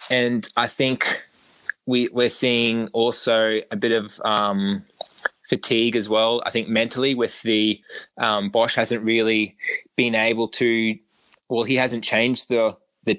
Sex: male